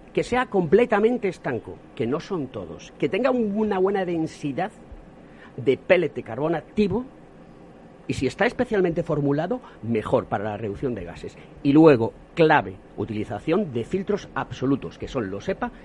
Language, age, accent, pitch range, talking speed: Spanish, 40-59, Spanish, 110-180 Hz, 150 wpm